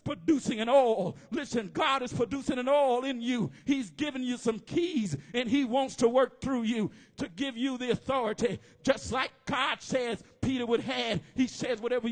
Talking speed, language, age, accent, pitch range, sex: 190 wpm, English, 50-69, American, 185-255 Hz, male